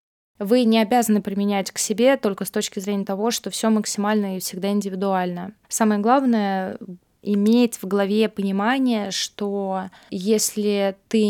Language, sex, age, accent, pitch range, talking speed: Russian, female, 20-39, native, 195-225 Hz, 140 wpm